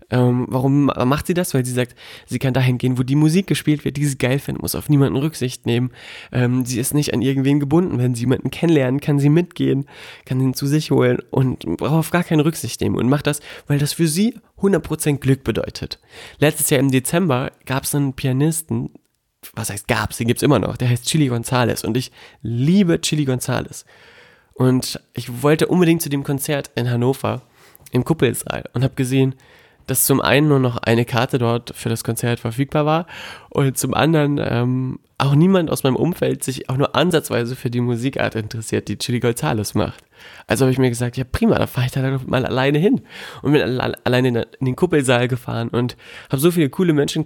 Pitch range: 120-145 Hz